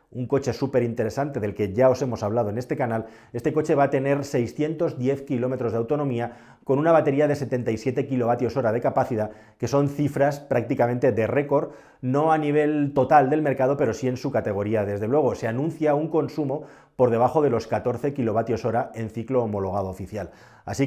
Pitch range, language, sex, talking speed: 115-140 Hz, English, male, 190 wpm